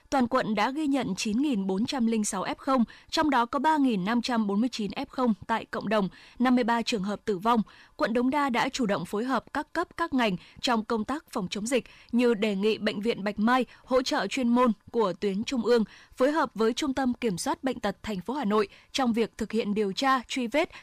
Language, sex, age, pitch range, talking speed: Vietnamese, female, 20-39, 215-265 Hz, 215 wpm